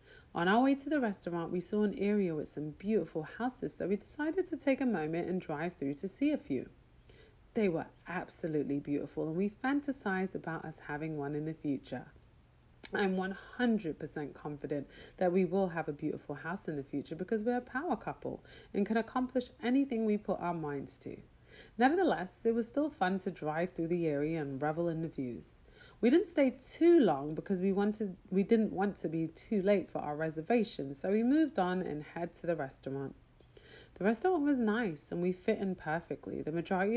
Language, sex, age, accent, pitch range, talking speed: English, female, 30-49, British, 160-230 Hz, 200 wpm